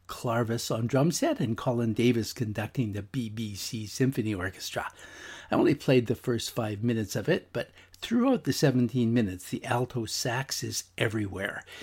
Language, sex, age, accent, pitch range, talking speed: English, male, 60-79, American, 105-130 Hz, 155 wpm